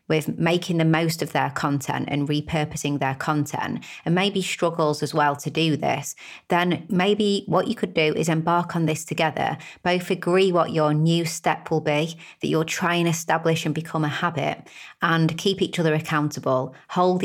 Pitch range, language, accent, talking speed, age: 155-180 Hz, English, British, 185 wpm, 30-49